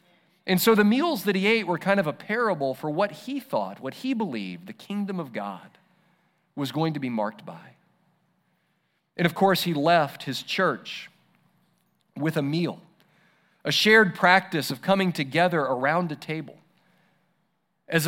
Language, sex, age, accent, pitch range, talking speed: English, male, 40-59, American, 140-185 Hz, 165 wpm